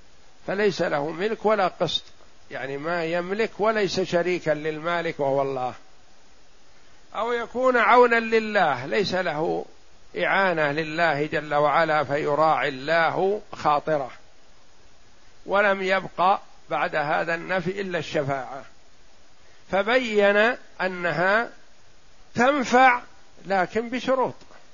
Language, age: Arabic, 50-69